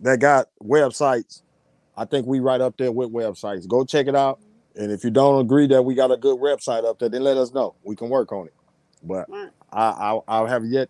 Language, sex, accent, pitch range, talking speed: English, male, American, 115-135 Hz, 235 wpm